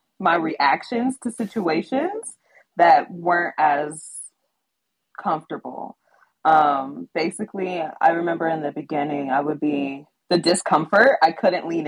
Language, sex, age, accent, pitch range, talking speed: English, female, 20-39, American, 150-185 Hz, 115 wpm